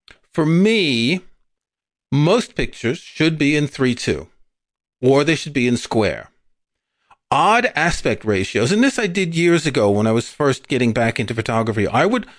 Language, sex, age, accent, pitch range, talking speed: English, male, 40-59, American, 120-175 Hz, 160 wpm